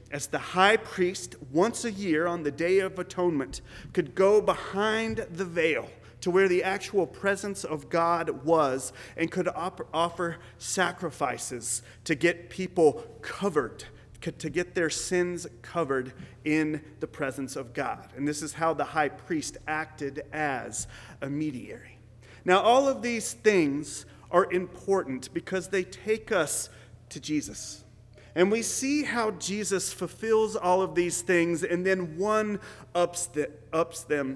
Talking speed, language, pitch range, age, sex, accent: 145 wpm, English, 135-180 Hz, 40-59, male, American